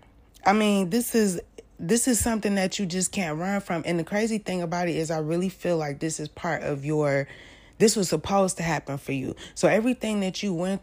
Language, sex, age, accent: English, female, 20-39, American